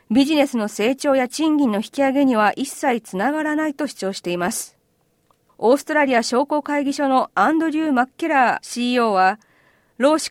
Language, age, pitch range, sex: Japanese, 40-59, 230-290 Hz, female